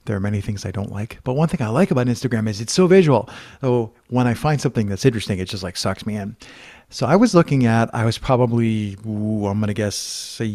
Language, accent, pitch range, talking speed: English, American, 105-120 Hz, 250 wpm